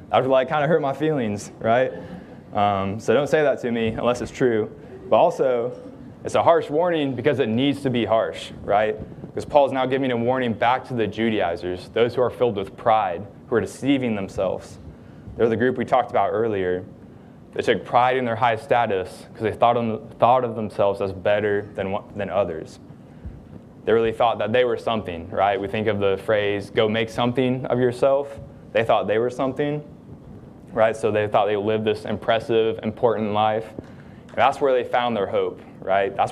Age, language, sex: 20-39, English, male